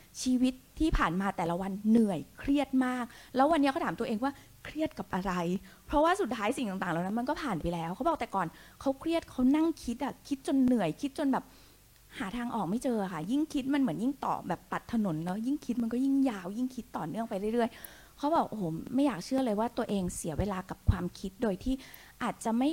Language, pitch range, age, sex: Thai, 185-255 Hz, 20-39, female